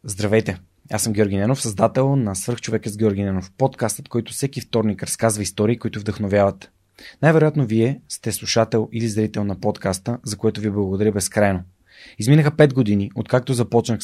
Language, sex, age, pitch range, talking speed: Bulgarian, male, 20-39, 105-125 Hz, 160 wpm